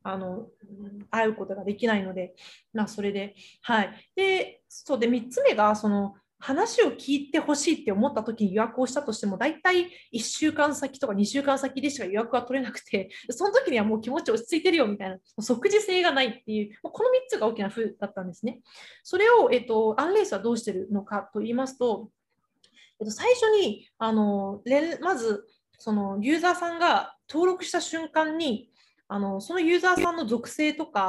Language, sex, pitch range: Japanese, female, 215-355 Hz